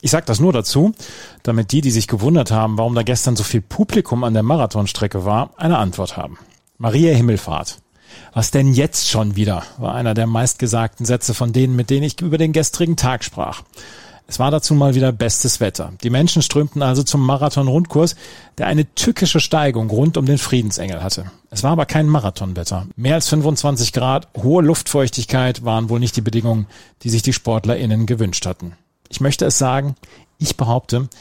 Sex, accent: male, German